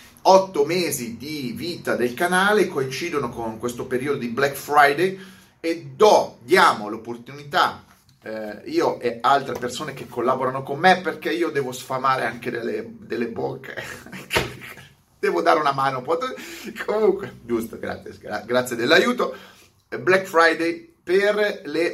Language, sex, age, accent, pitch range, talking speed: Italian, male, 30-49, native, 120-145 Hz, 125 wpm